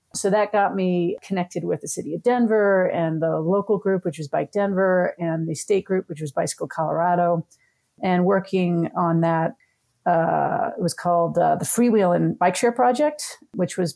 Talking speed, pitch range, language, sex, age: 185 wpm, 170-205 Hz, English, female, 40-59